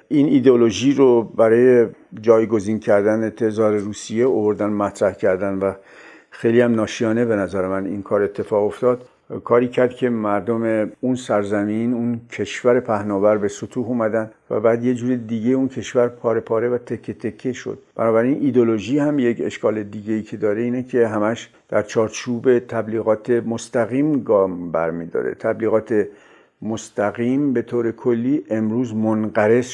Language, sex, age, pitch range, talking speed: Persian, male, 50-69, 105-125 Hz, 150 wpm